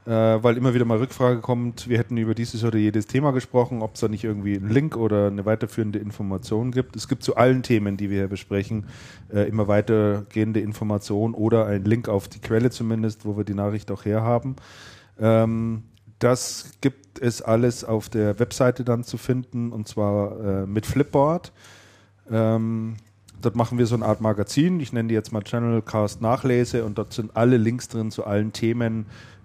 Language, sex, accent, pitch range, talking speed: German, male, German, 100-115 Hz, 195 wpm